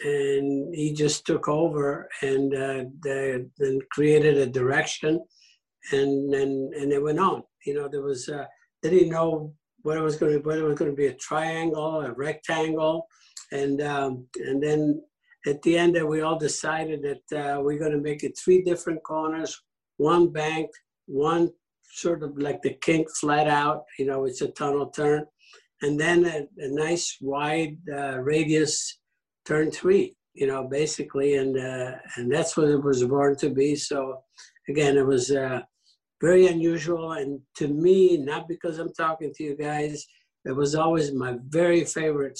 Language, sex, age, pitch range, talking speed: English, male, 60-79, 140-160 Hz, 175 wpm